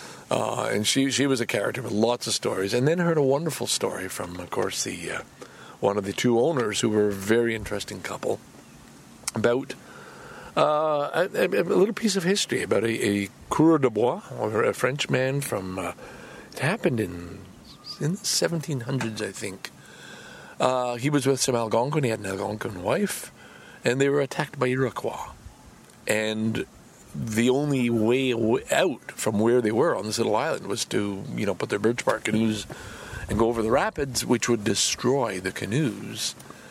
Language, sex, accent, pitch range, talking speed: English, male, American, 105-135 Hz, 180 wpm